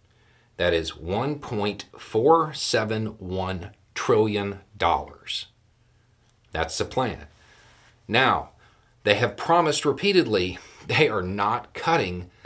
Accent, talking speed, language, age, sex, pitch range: American, 75 wpm, English, 40-59, male, 100-115 Hz